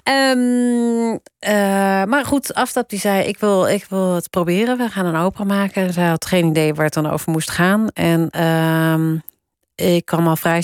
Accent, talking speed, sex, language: Dutch, 190 wpm, female, Dutch